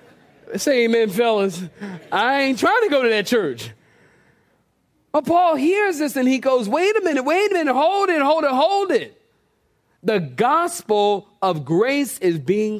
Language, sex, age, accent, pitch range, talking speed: English, male, 40-59, American, 205-330 Hz, 170 wpm